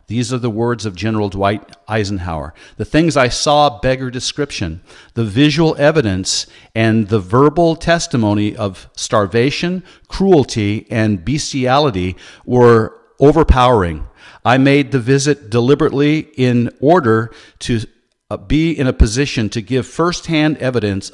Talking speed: 130 wpm